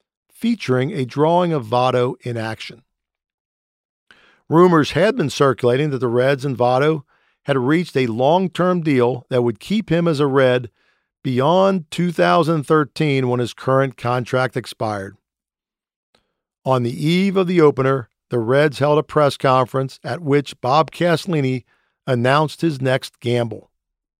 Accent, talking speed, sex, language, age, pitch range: American, 135 wpm, male, English, 50-69, 125-160 Hz